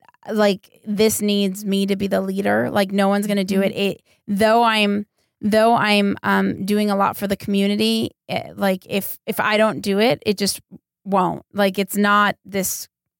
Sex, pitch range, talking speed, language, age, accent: female, 190-210 Hz, 190 wpm, English, 20-39, American